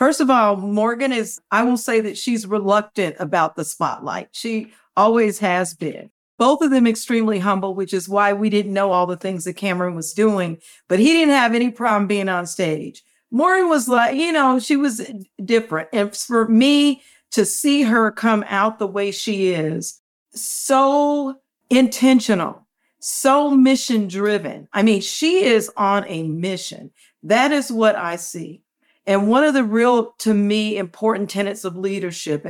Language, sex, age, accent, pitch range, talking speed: English, female, 50-69, American, 185-235 Hz, 170 wpm